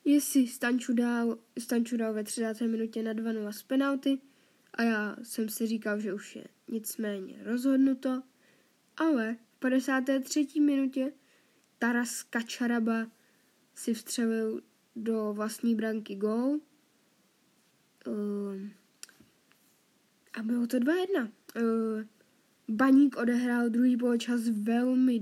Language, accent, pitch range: Czech, native, 225-260 Hz